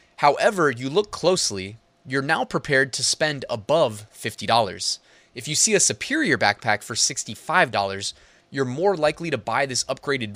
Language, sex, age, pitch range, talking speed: English, male, 20-39, 110-160 Hz, 150 wpm